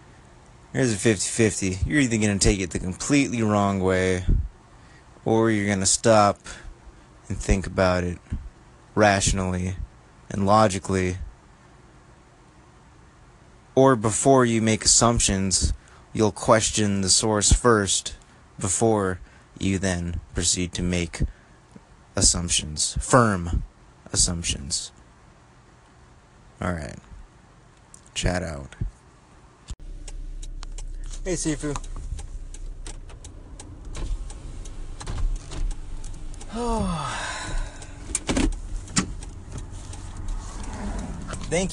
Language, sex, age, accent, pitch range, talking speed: English, male, 20-39, American, 90-120 Hz, 75 wpm